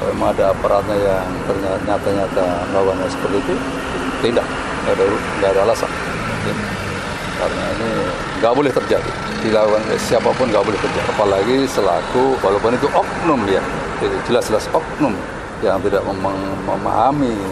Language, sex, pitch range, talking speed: Indonesian, male, 145-190 Hz, 125 wpm